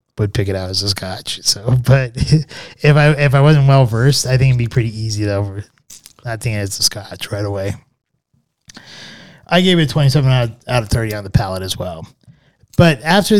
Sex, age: male, 20-39